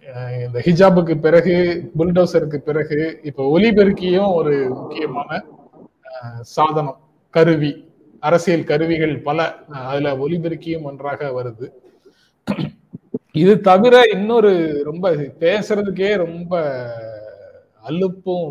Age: 30-49